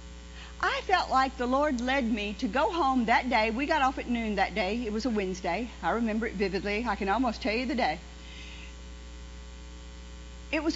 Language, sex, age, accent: English, female, 50-69, American